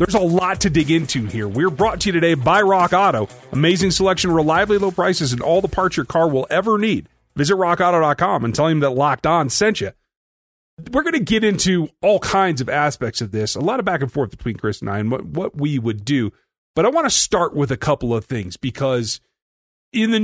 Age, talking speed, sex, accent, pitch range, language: 40-59, 235 wpm, male, American, 120-170 Hz, English